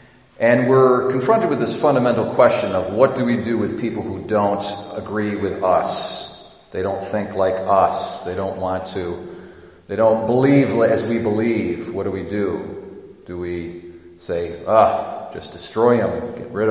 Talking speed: 170 wpm